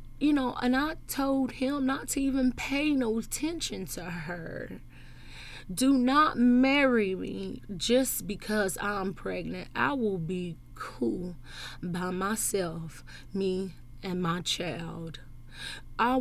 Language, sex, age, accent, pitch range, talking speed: English, female, 20-39, American, 170-210 Hz, 120 wpm